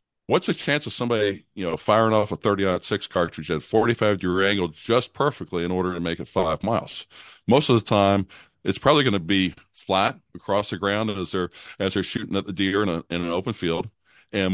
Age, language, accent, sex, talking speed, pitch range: 50-69, English, American, male, 215 wpm, 90-110 Hz